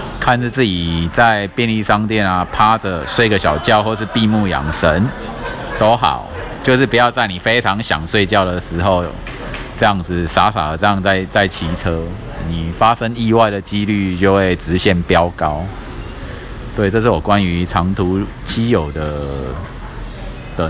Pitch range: 85-110 Hz